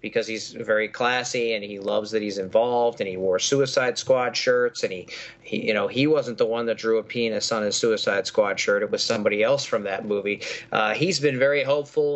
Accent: American